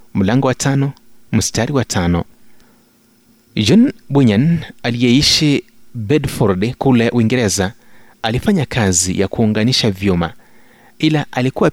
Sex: male